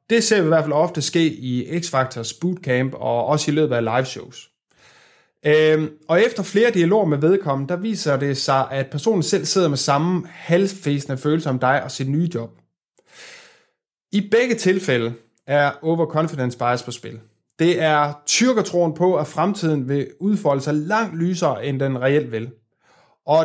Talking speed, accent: 170 wpm, native